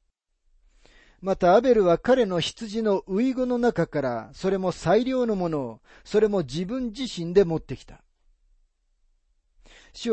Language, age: Japanese, 40-59